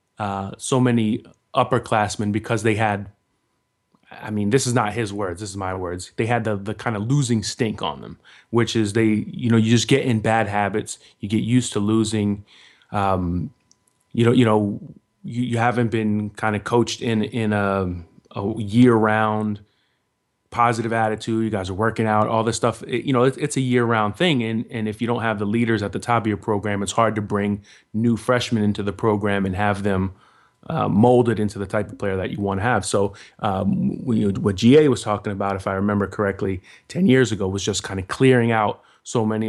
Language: English